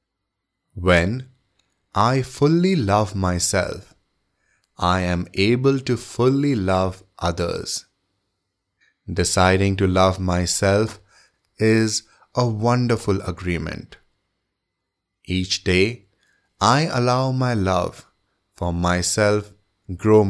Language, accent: English, Indian